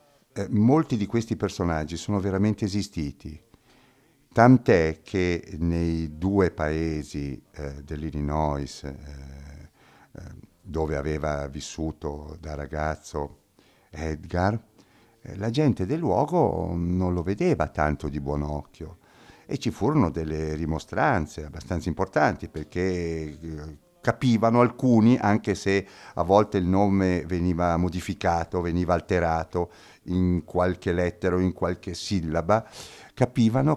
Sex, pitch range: male, 80-105 Hz